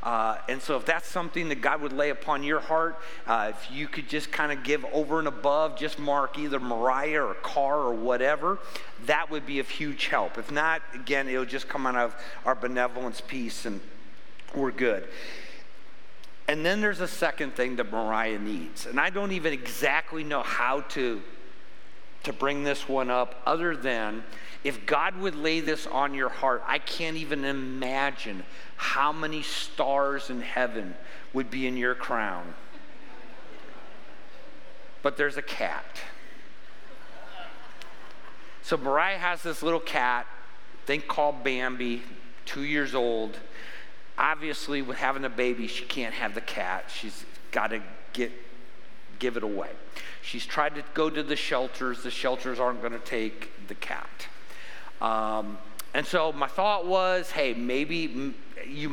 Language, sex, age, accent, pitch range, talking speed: English, male, 50-69, American, 125-150 Hz, 160 wpm